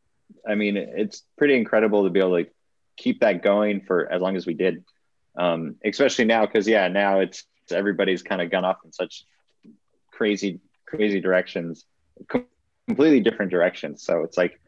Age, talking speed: 30-49, 170 wpm